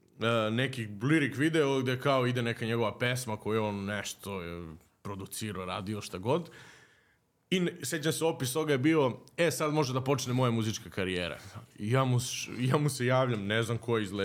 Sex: male